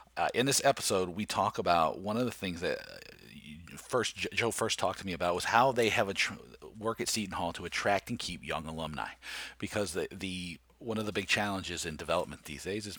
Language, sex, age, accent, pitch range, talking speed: English, male, 40-59, American, 80-100 Hz, 220 wpm